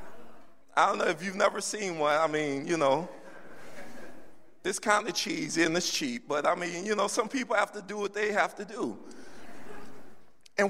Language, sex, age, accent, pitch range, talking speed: English, male, 50-69, American, 215-270 Hz, 195 wpm